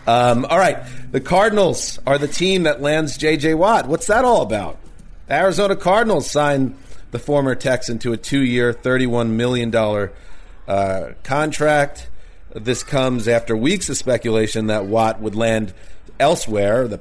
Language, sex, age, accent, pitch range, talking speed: English, male, 40-59, American, 100-130 Hz, 145 wpm